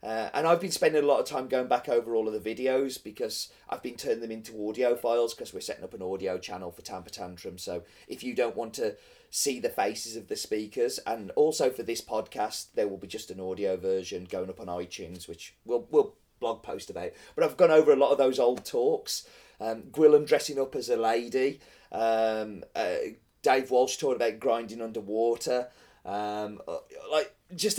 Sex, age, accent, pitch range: male, 30-49, British, 105-175 Hz